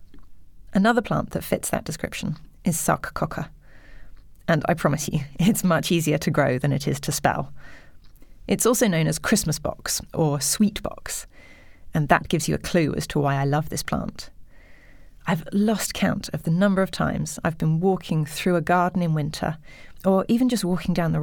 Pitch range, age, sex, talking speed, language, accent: 150-195 Hz, 30-49, female, 185 wpm, English, British